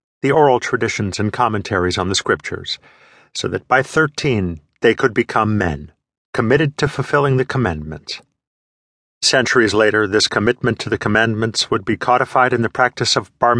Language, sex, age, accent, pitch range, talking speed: English, male, 50-69, American, 110-140 Hz, 160 wpm